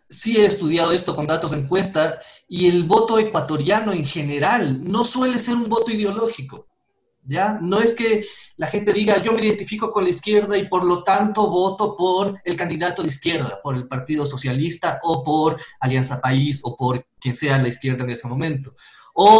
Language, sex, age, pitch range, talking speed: Spanish, male, 30-49, 140-200 Hz, 190 wpm